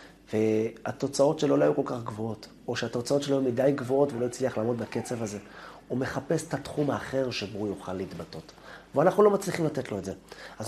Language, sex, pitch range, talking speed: Hebrew, male, 95-135 Hz, 200 wpm